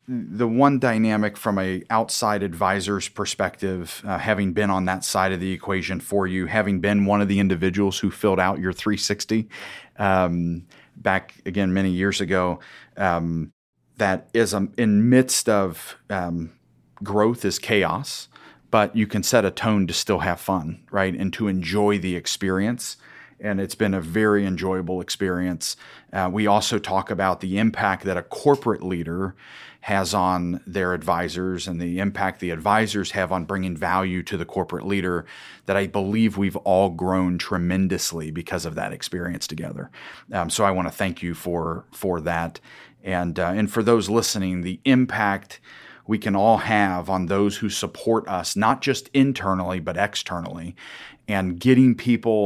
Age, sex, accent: 30-49, male, American